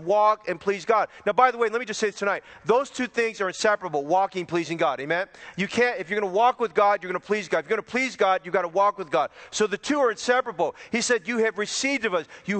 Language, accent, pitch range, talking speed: English, American, 195-235 Hz, 295 wpm